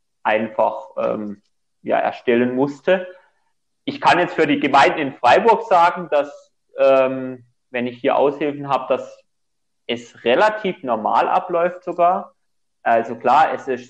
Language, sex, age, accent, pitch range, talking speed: German, male, 30-49, German, 125-160 Hz, 135 wpm